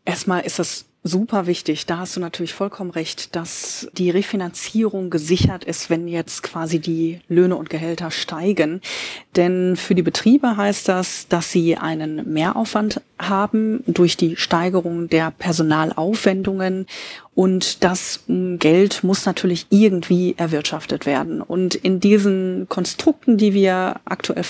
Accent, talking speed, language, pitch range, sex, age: German, 135 wpm, German, 175-200 Hz, female, 30-49